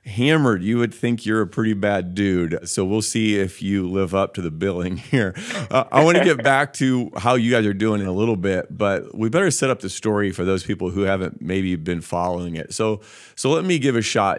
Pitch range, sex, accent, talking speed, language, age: 95-115 Hz, male, American, 245 wpm, English, 30-49